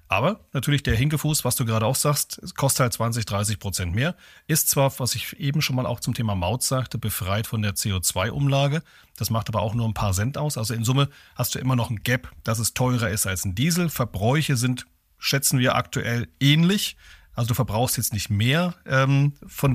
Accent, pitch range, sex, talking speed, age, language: German, 110-140 Hz, male, 215 wpm, 40-59, German